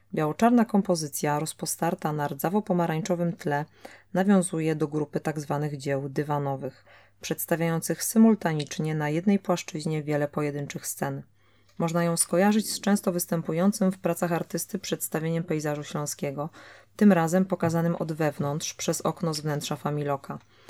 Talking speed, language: 120 wpm, Polish